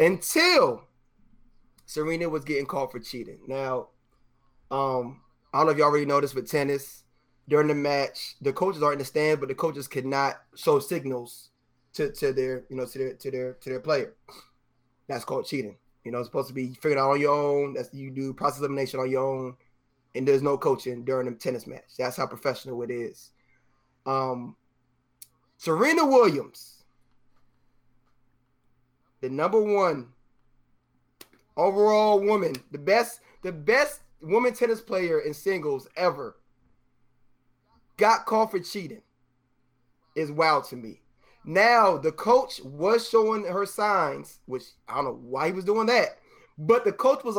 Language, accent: English, American